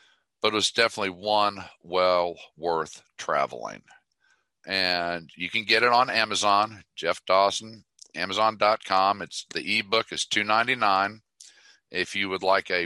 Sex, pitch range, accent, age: male, 90-110 Hz, American, 50-69